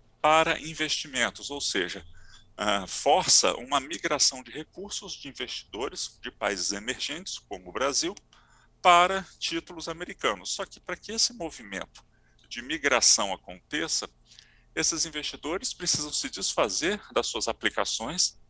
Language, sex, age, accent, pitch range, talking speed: Portuguese, male, 40-59, Brazilian, 115-160 Hz, 120 wpm